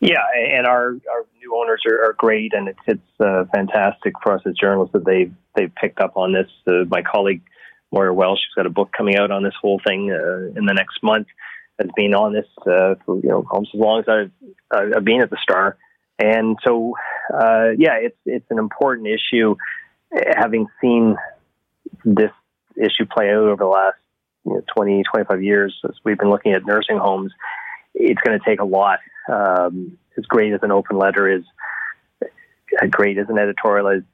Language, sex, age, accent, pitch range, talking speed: English, male, 30-49, American, 95-110 Hz, 200 wpm